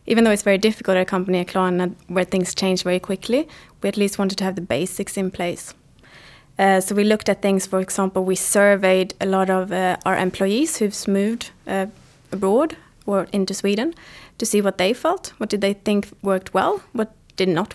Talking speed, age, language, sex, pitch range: 210 wpm, 20-39, Swedish, female, 190-220 Hz